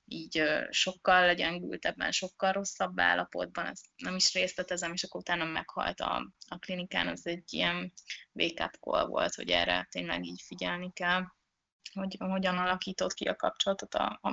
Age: 20-39